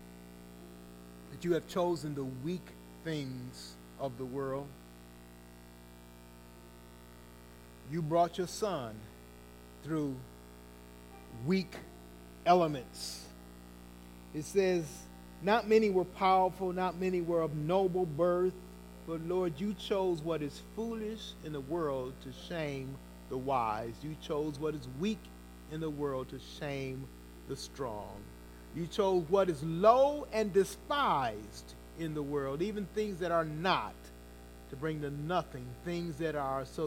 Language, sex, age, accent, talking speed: English, male, 40-59, American, 125 wpm